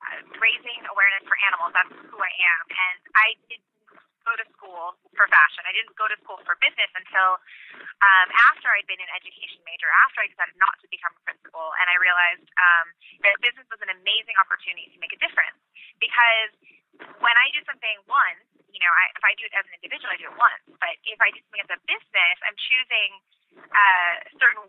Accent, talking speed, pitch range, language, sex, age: American, 205 wpm, 175-225 Hz, English, female, 20-39